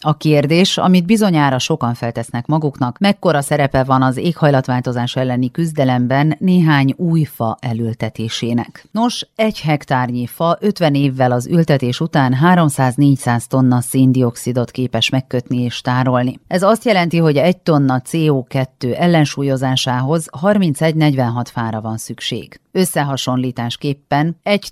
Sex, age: female, 40-59